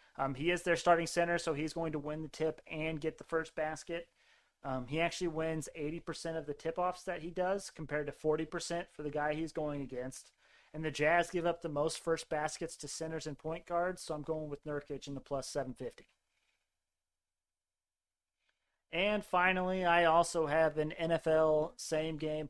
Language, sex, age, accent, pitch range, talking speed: English, male, 30-49, American, 140-165 Hz, 185 wpm